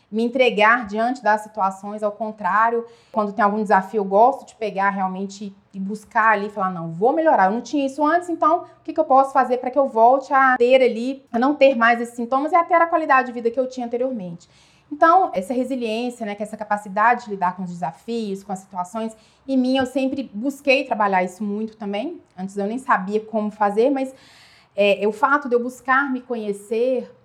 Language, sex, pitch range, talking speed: Portuguese, female, 200-265 Hz, 210 wpm